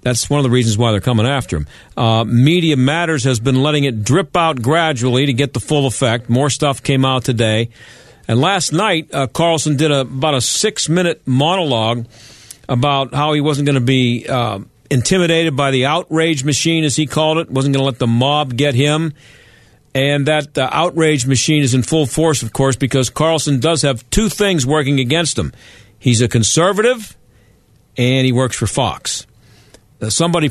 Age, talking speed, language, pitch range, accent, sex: 50-69, 185 wpm, English, 120-150 Hz, American, male